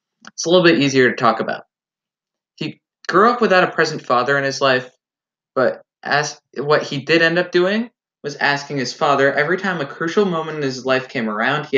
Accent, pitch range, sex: American, 115-155 Hz, male